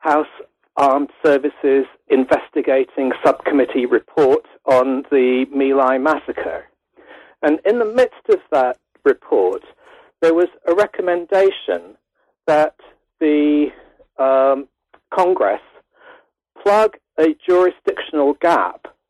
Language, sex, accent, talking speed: English, male, British, 90 wpm